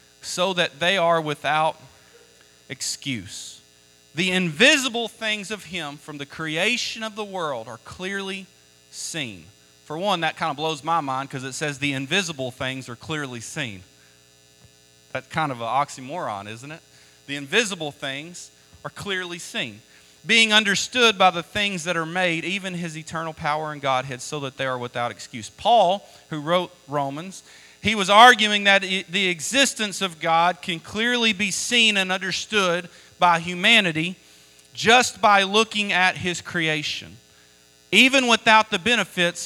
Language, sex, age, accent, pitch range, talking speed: English, male, 30-49, American, 145-195 Hz, 150 wpm